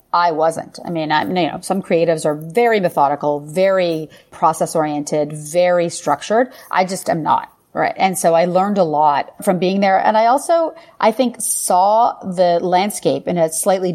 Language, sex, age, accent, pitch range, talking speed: English, female, 30-49, American, 165-205 Hz, 175 wpm